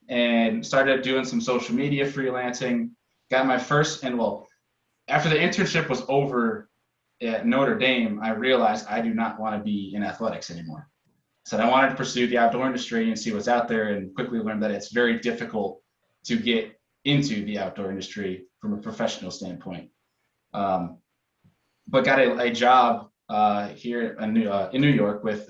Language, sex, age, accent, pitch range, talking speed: English, male, 20-39, American, 110-135 Hz, 170 wpm